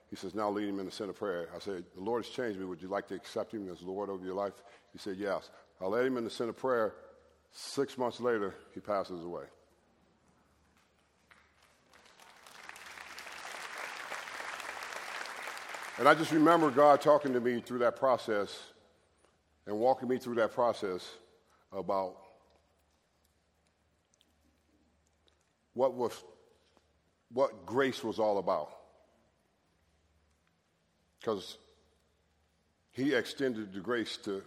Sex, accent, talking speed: male, American, 130 wpm